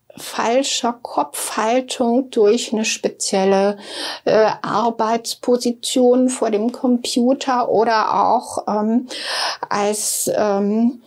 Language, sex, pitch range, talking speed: English, female, 220-265 Hz, 80 wpm